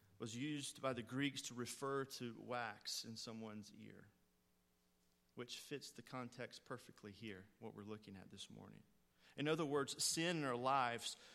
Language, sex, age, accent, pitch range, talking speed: English, male, 40-59, American, 105-125 Hz, 165 wpm